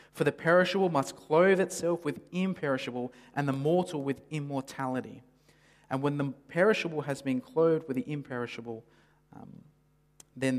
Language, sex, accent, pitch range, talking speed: English, male, Australian, 125-150 Hz, 140 wpm